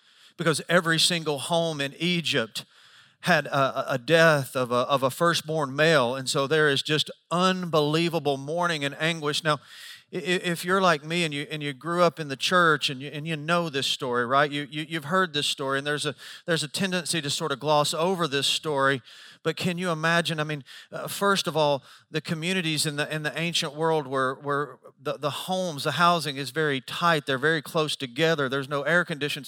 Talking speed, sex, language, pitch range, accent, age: 210 wpm, male, English, 140-165 Hz, American, 40-59